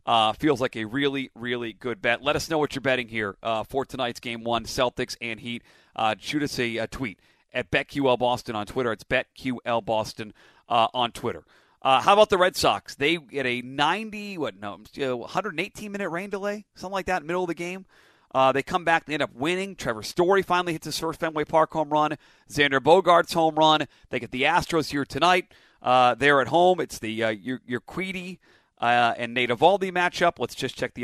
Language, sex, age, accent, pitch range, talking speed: English, male, 40-59, American, 120-170 Hz, 210 wpm